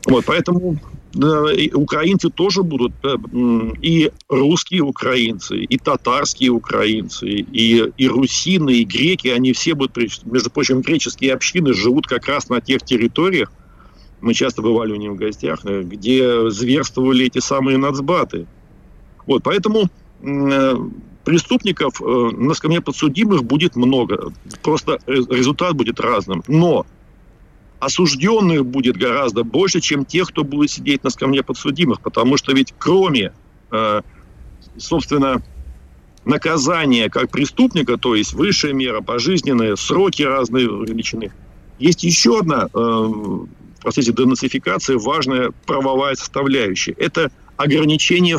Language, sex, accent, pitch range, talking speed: Russian, male, native, 120-155 Hz, 120 wpm